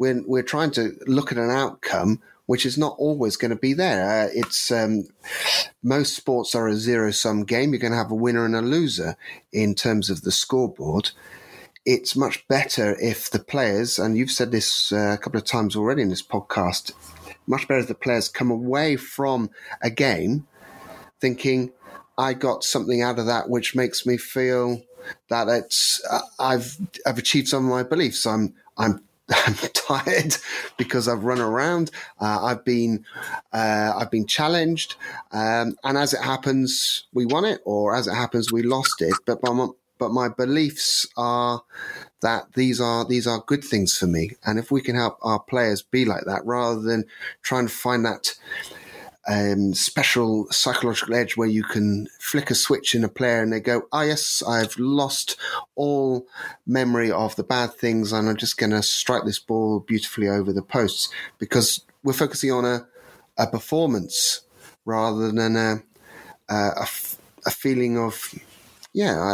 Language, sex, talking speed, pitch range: English, male, 175 wpm, 110-130 Hz